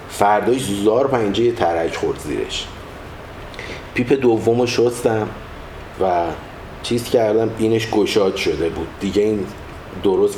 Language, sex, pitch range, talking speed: Persian, male, 95-115 Hz, 110 wpm